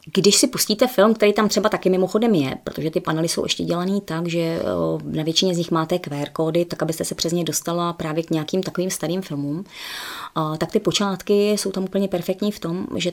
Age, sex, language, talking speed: 20-39, female, Czech, 210 wpm